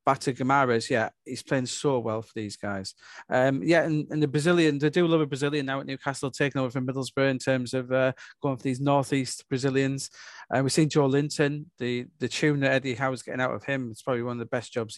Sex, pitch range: male, 125-140 Hz